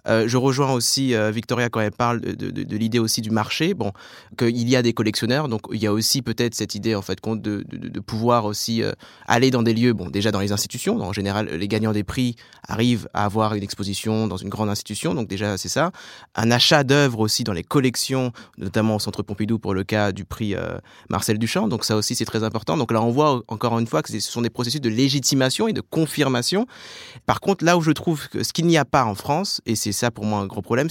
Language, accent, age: French, French, 20-39